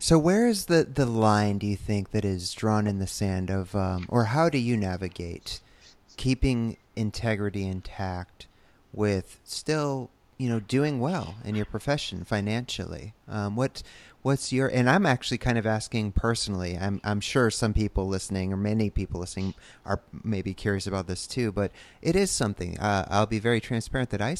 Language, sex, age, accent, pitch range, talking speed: English, male, 30-49, American, 95-120 Hz, 180 wpm